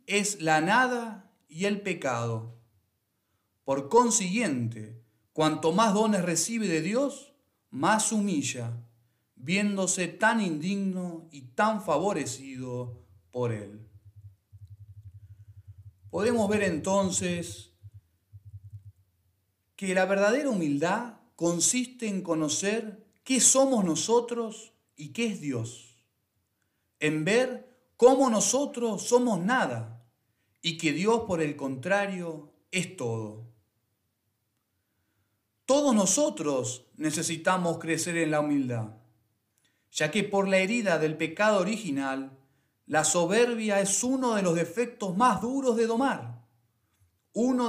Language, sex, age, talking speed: Spanish, male, 40-59, 105 wpm